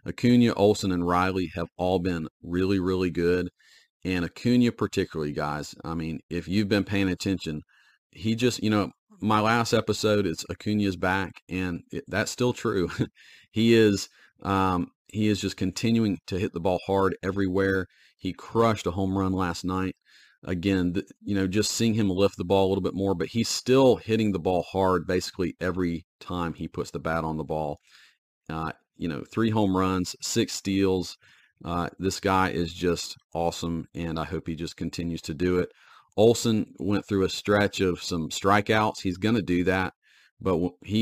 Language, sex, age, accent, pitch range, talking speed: English, male, 40-59, American, 85-100 Hz, 185 wpm